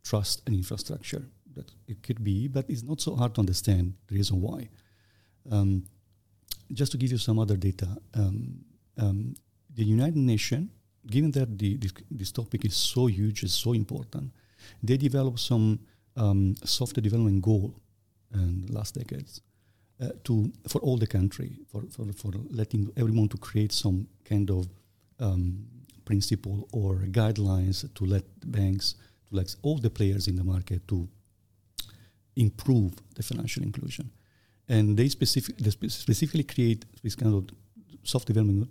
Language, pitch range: English, 100-120 Hz